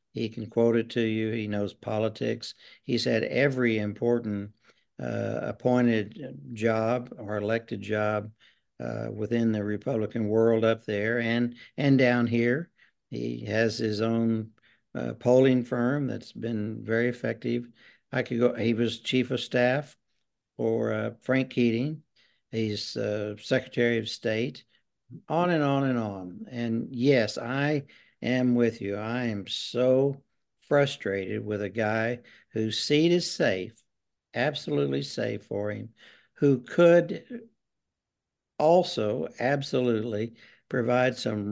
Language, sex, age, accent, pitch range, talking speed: English, male, 60-79, American, 110-125 Hz, 130 wpm